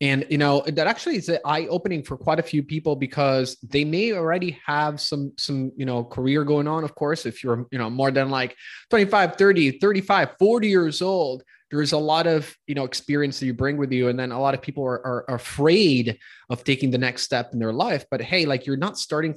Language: English